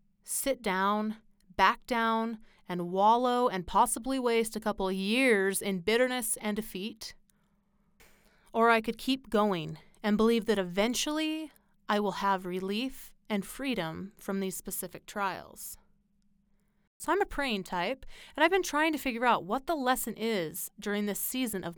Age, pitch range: 30-49, 195-240 Hz